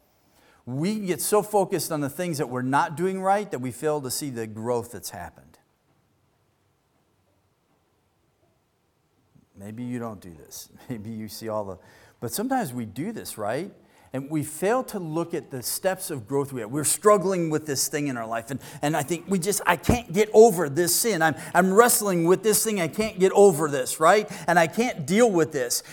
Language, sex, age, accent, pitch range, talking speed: English, male, 40-59, American, 135-215 Hz, 205 wpm